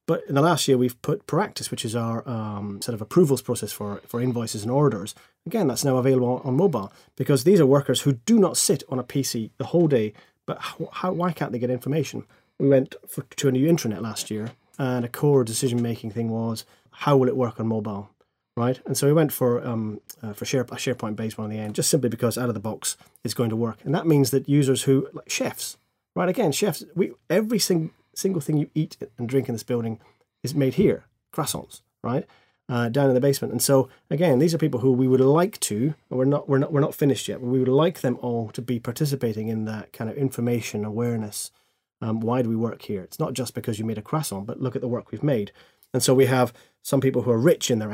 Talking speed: 245 wpm